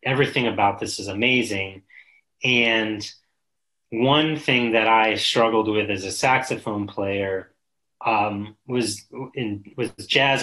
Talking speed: 115 wpm